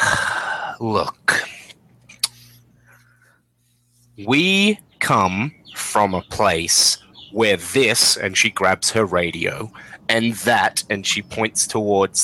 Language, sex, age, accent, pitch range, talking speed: English, male, 30-49, Australian, 115-155 Hz, 95 wpm